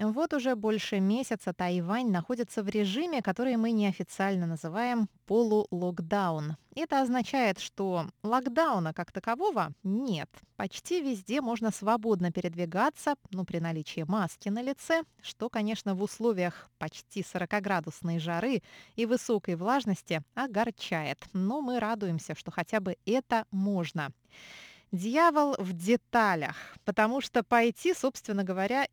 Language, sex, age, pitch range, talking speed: Russian, female, 20-39, 185-240 Hz, 120 wpm